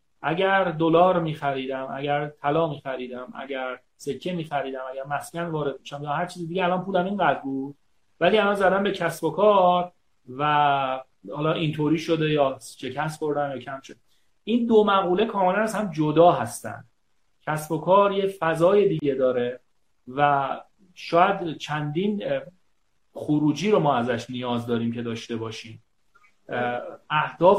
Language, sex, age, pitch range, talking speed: Persian, male, 30-49, 140-180 Hz, 140 wpm